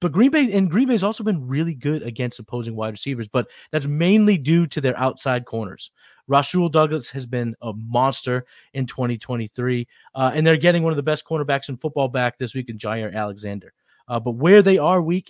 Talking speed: 210 wpm